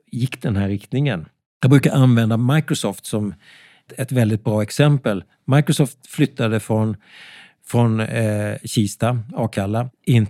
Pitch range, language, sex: 105-135 Hz, Swedish, male